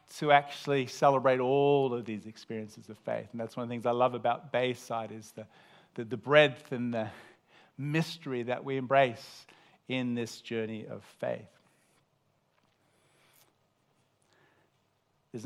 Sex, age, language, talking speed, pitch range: male, 40-59, English, 140 wpm, 125-165 Hz